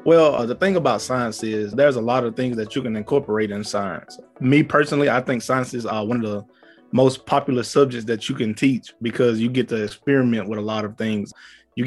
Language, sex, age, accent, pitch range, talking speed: English, male, 20-39, American, 115-140 Hz, 230 wpm